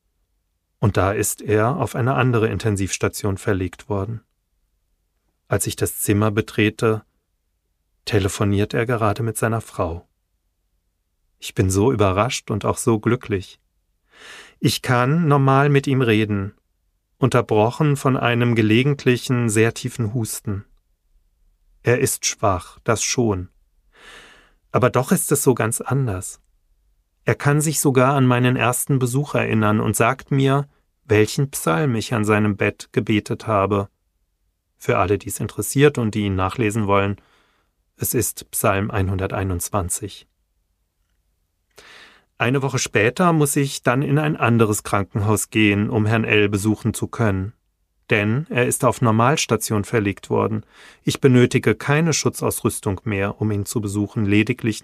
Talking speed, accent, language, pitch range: 135 wpm, German, German, 95-120 Hz